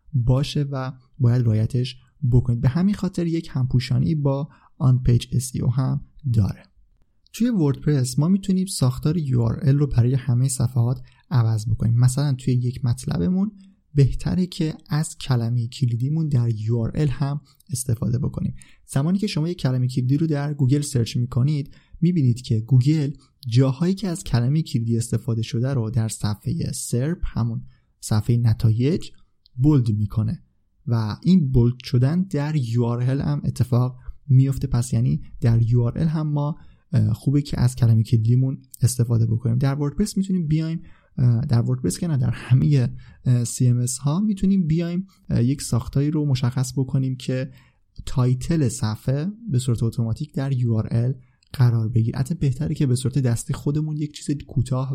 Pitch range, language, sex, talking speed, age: 120-150 Hz, Persian, male, 145 wpm, 30-49